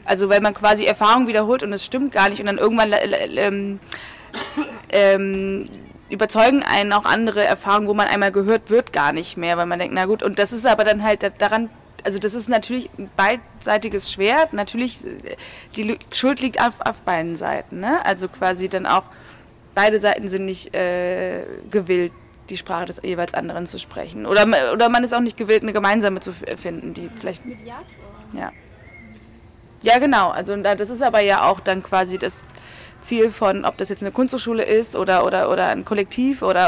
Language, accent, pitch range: German, German, 195-225 Hz